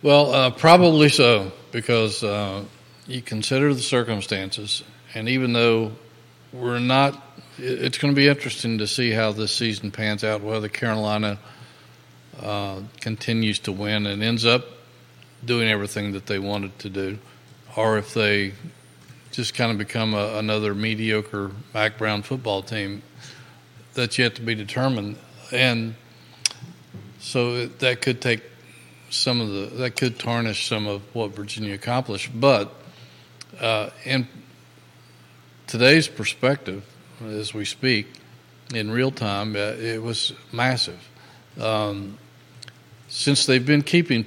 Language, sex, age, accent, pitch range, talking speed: English, male, 40-59, American, 105-120 Hz, 130 wpm